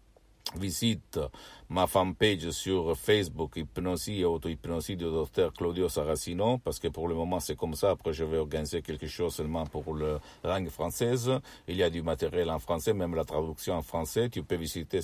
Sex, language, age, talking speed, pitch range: male, Italian, 50-69, 185 wpm, 80-100 Hz